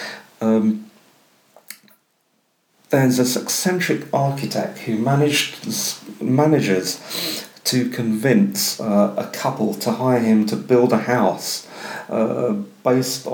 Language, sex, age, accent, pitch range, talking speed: English, male, 40-59, British, 110-145 Hz, 100 wpm